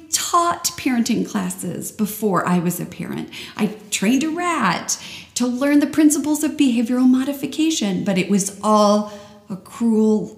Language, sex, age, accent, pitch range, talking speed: English, female, 40-59, American, 200-245 Hz, 145 wpm